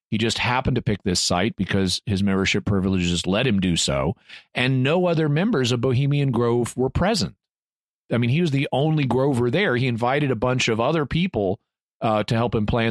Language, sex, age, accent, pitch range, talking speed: English, male, 40-59, American, 110-145 Hz, 205 wpm